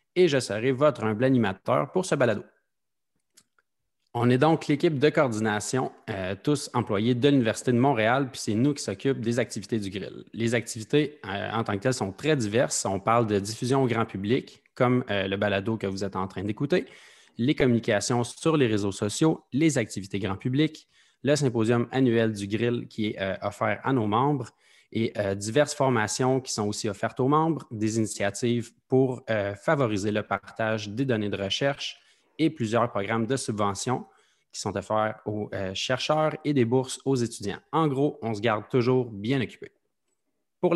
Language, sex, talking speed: French, male, 185 wpm